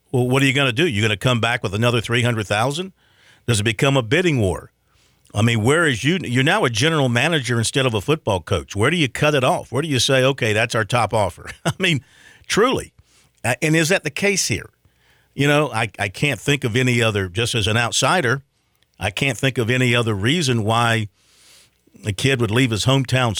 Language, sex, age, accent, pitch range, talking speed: English, male, 50-69, American, 110-135 Hz, 225 wpm